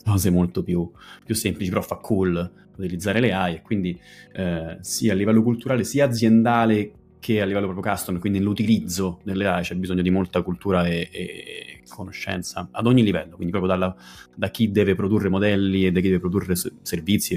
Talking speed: 185 wpm